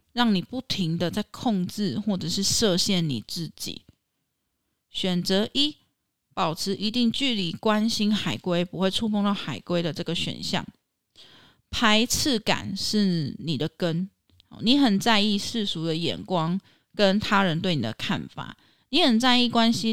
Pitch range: 165-215 Hz